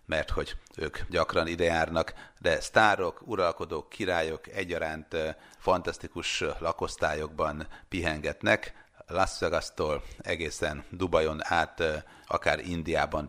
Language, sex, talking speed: Hungarian, male, 90 wpm